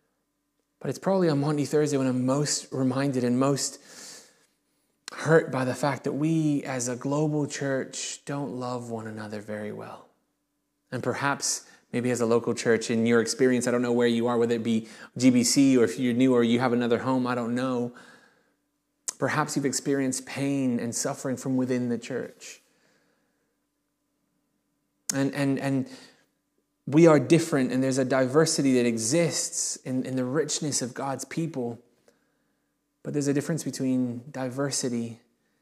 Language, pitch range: English, 120-140 Hz